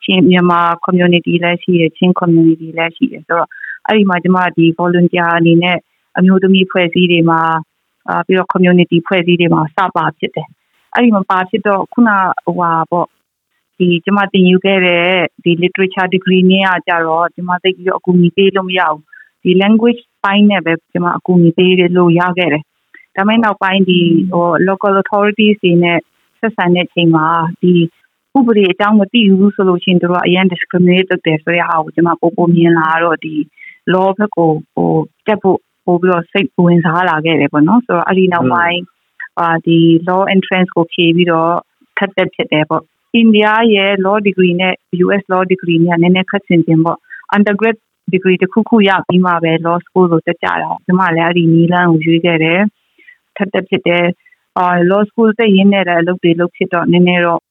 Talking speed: 75 wpm